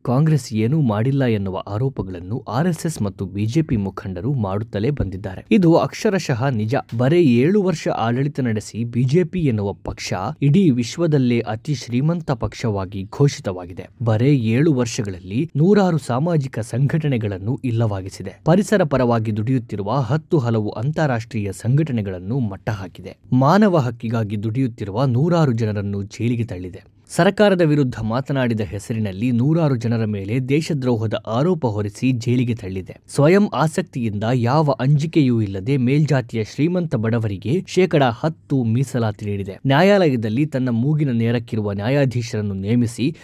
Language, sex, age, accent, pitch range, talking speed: Kannada, male, 20-39, native, 110-150 Hz, 110 wpm